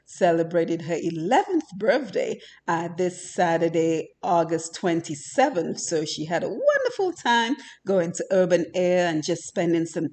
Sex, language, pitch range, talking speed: female, English, 165-260 Hz, 135 wpm